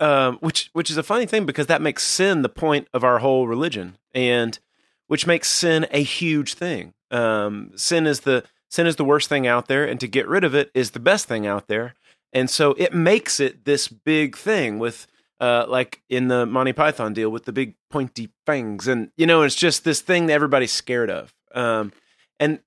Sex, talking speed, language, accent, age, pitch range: male, 215 wpm, English, American, 30-49, 125-160 Hz